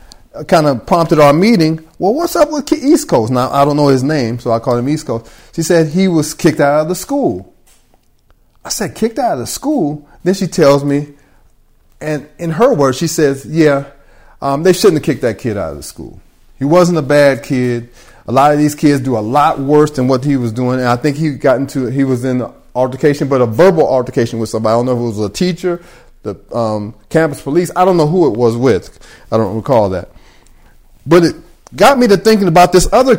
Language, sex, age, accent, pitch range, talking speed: English, male, 30-49, American, 130-180 Hz, 235 wpm